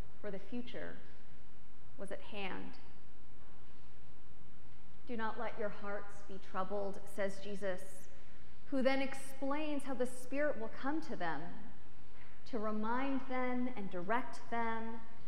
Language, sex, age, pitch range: English, female, 30-49, 210-265 Hz